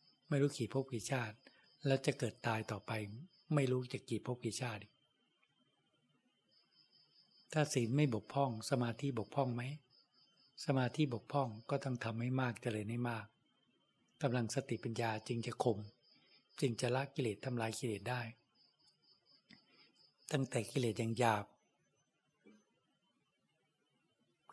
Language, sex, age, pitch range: Thai, male, 60-79, 115-135 Hz